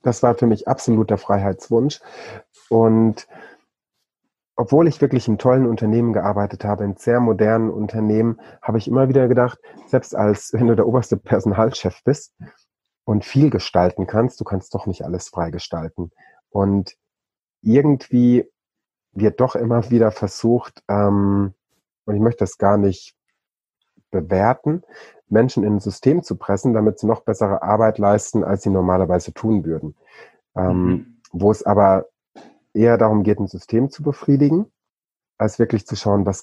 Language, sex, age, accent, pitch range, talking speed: German, male, 30-49, German, 100-120 Hz, 150 wpm